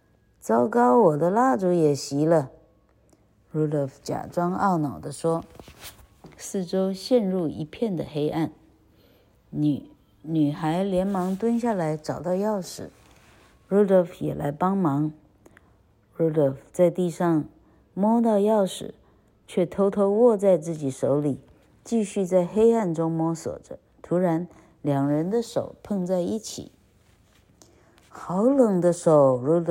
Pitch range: 140-185 Hz